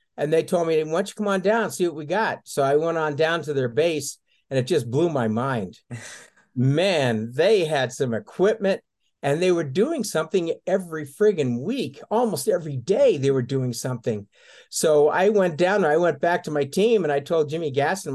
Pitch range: 135-185 Hz